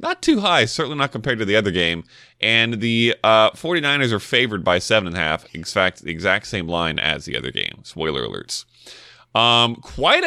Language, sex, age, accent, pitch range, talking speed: English, male, 20-39, American, 100-130 Hz, 185 wpm